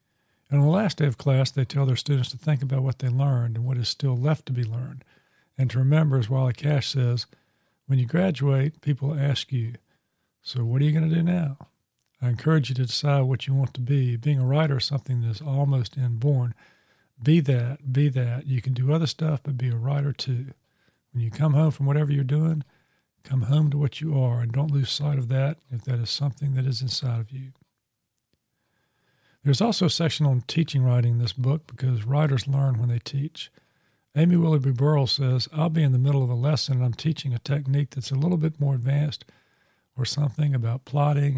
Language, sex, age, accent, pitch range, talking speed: English, male, 50-69, American, 125-145 Hz, 220 wpm